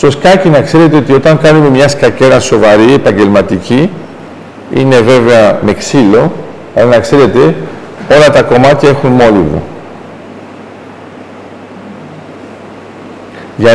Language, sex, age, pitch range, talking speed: Greek, male, 50-69, 120-150 Hz, 105 wpm